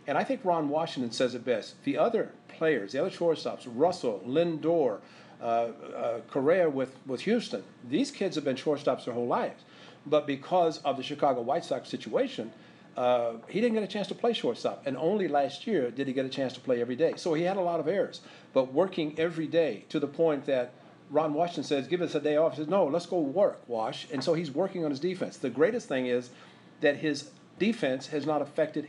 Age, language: 50-69, English